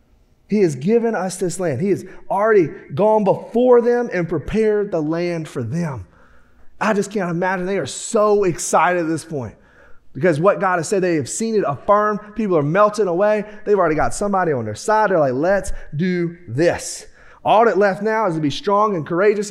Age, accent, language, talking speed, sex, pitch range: 30-49, American, English, 200 wpm, male, 165-215 Hz